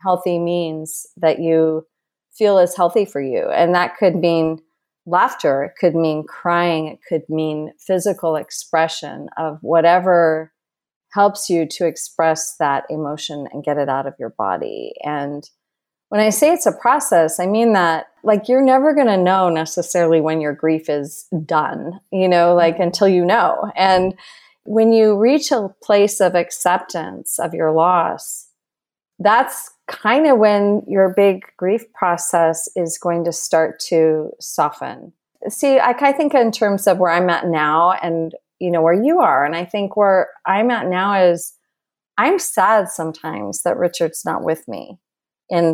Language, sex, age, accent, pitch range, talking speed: English, female, 30-49, American, 160-195 Hz, 165 wpm